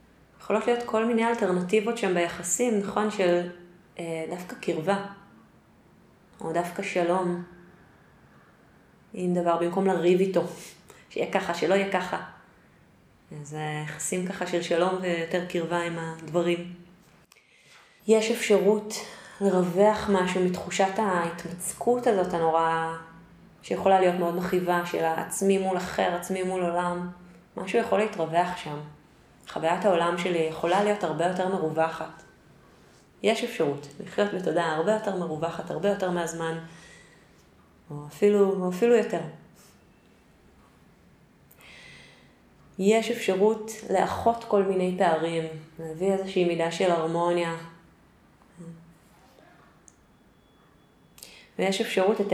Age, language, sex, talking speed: 20-39, Hebrew, female, 110 wpm